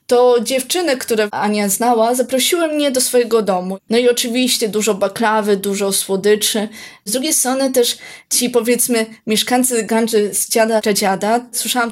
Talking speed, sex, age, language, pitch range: 150 wpm, female, 20-39, Polish, 205-245 Hz